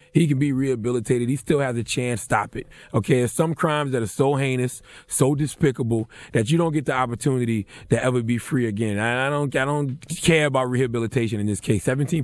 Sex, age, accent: male, 30-49, American